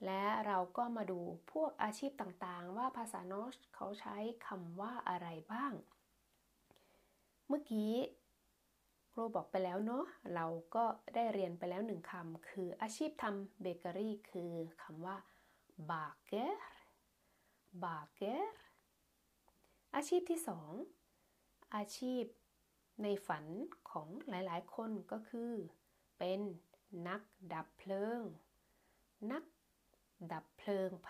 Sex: female